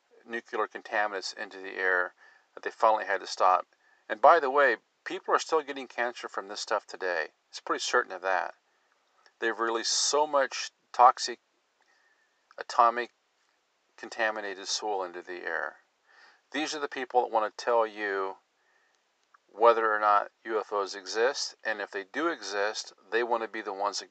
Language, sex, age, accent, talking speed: English, male, 50-69, American, 165 wpm